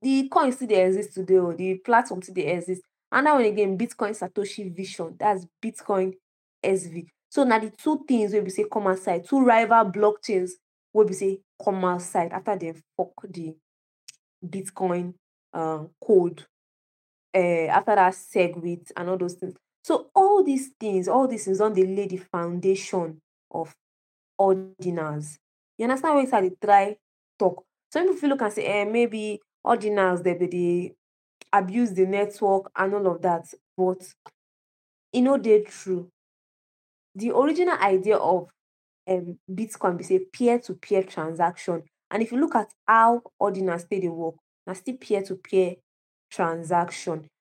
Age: 20-39